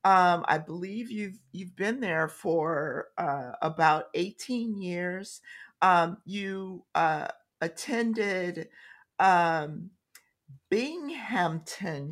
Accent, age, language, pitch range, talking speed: American, 50-69, English, 165-210 Hz, 90 wpm